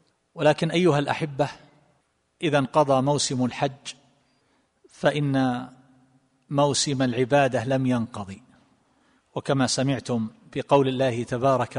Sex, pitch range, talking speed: male, 130-150 Hz, 85 wpm